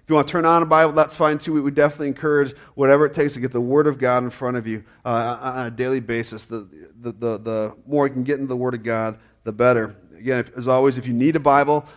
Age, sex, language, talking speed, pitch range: 40-59, male, English, 285 wpm, 115-150 Hz